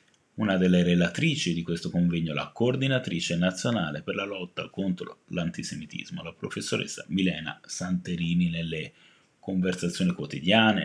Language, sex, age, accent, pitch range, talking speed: Italian, male, 30-49, native, 85-105 Hz, 115 wpm